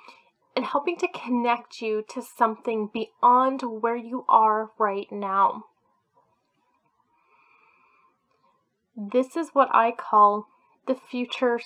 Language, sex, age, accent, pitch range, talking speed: English, female, 10-29, American, 210-280 Hz, 105 wpm